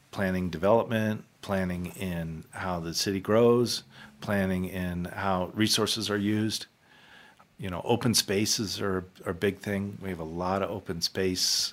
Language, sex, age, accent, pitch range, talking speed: English, male, 50-69, American, 85-100 Hz, 150 wpm